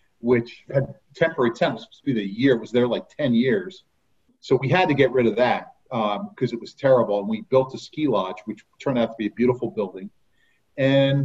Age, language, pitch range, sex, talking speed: 40-59, English, 120-170 Hz, male, 225 wpm